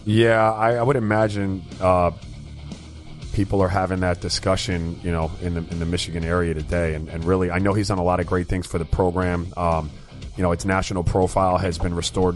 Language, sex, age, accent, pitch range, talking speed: English, male, 30-49, American, 90-110 Hz, 215 wpm